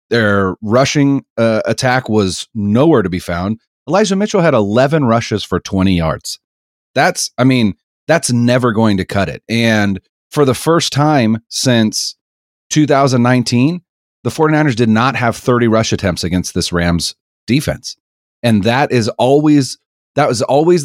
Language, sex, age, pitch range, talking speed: English, male, 30-49, 90-135 Hz, 150 wpm